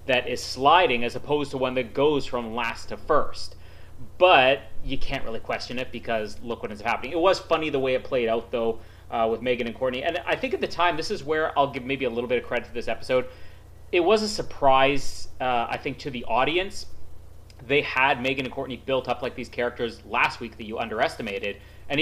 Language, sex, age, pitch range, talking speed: English, male, 30-49, 115-150 Hz, 230 wpm